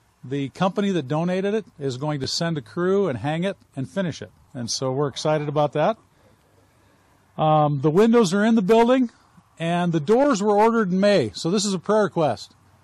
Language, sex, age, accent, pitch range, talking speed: English, male, 50-69, American, 135-190 Hz, 200 wpm